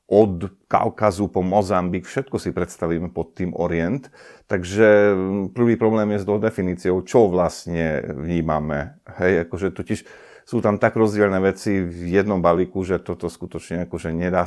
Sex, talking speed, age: male, 145 wpm, 50-69